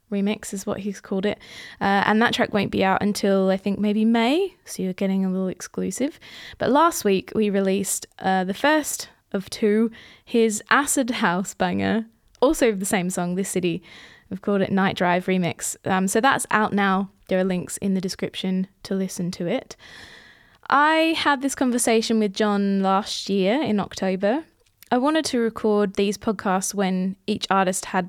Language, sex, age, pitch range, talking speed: English, female, 20-39, 190-225 Hz, 180 wpm